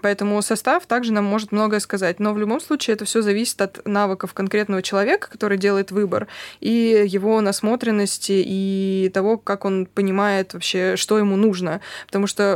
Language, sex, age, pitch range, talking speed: Russian, female, 20-39, 190-215 Hz, 165 wpm